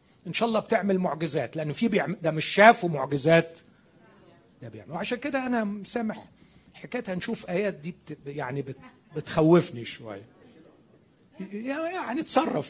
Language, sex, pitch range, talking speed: Arabic, male, 165-245 Hz, 130 wpm